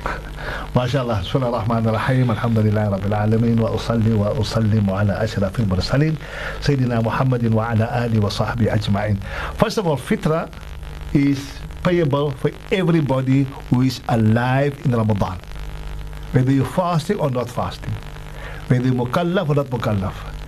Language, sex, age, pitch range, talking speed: English, male, 50-69, 115-150 Hz, 95 wpm